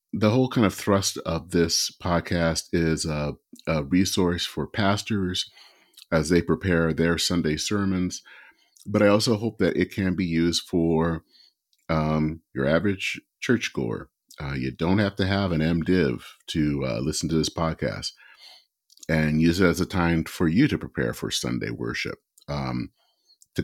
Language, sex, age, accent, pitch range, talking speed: English, male, 40-59, American, 80-100 Hz, 160 wpm